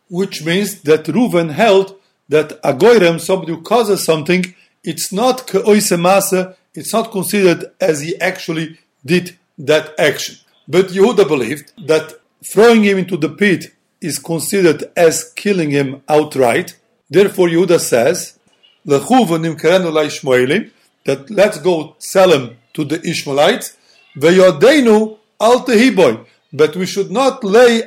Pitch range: 165-205 Hz